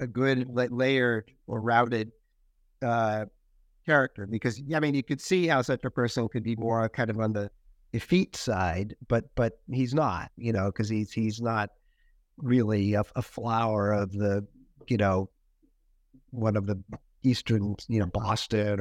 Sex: male